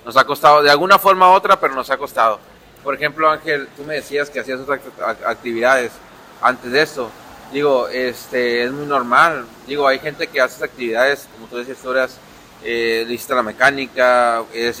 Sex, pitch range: male, 125-150 Hz